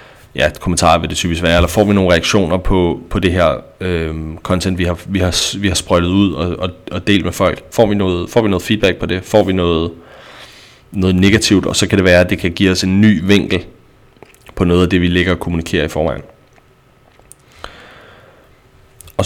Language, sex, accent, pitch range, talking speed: Danish, male, native, 85-95 Hz, 220 wpm